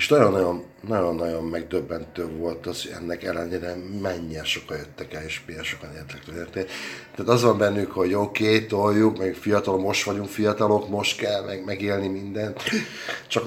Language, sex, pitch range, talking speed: Hungarian, male, 85-100 Hz, 165 wpm